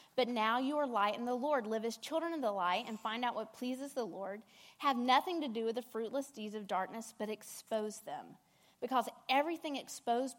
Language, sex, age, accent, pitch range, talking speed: English, female, 30-49, American, 200-250 Hz, 215 wpm